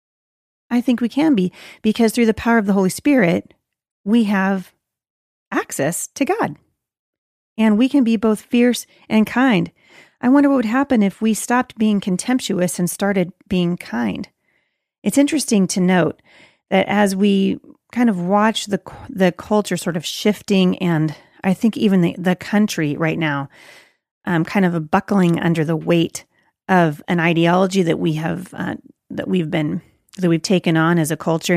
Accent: American